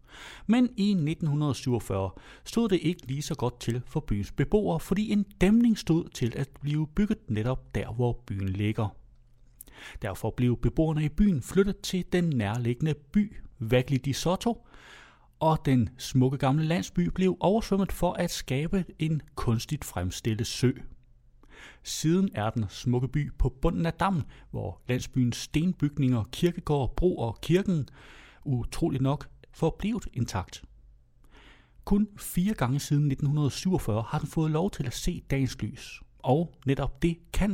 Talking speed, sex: 145 wpm, male